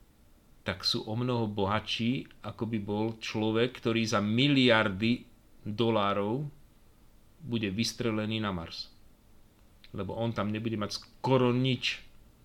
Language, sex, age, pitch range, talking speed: Slovak, male, 40-59, 110-130 Hz, 115 wpm